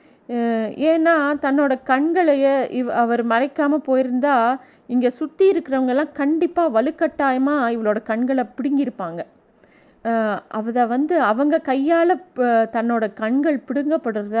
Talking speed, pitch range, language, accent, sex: 90 wpm, 220-275 Hz, Tamil, native, female